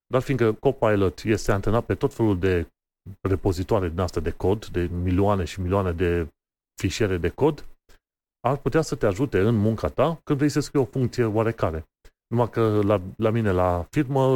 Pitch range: 95-125 Hz